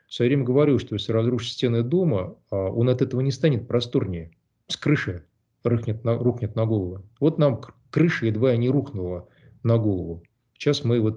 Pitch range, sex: 110-130 Hz, male